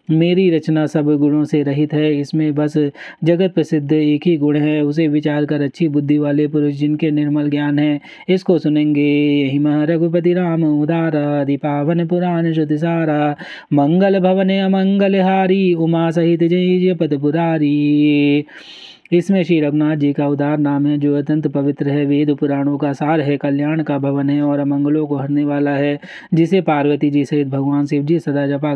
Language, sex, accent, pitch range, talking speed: Hindi, male, native, 145-170 Hz, 165 wpm